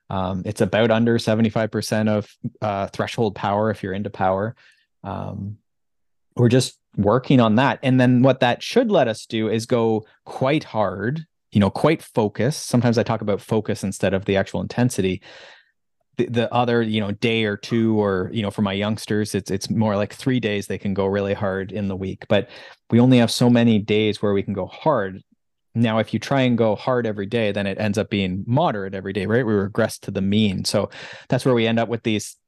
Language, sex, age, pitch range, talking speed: English, male, 20-39, 100-120 Hz, 215 wpm